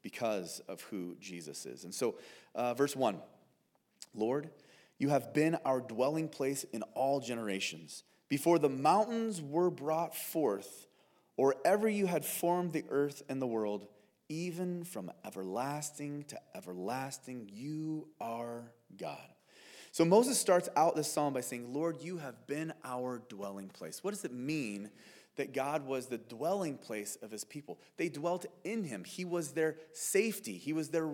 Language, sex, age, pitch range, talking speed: English, male, 30-49, 130-195 Hz, 160 wpm